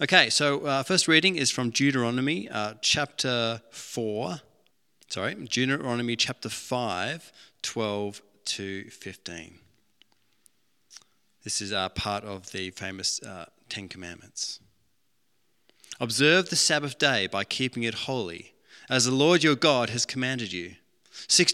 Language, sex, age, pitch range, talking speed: English, male, 30-49, 105-135 Hz, 130 wpm